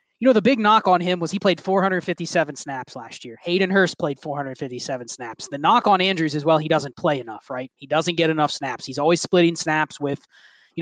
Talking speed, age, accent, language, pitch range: 225 wpm, 20-39, American, English, 150-190 Hz